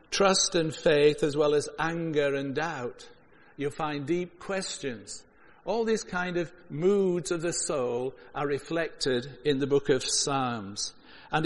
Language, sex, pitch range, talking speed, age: English, male, 145-180 Hz, 150 wpm, 60-79